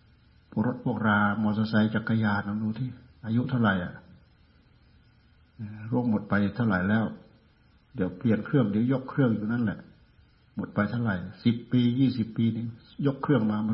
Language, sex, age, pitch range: Thai, male, 60-79, 95-115 Hz